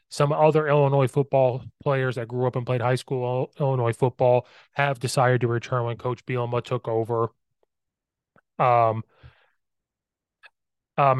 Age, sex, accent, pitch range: 30-49, male, American, 120-150 Hz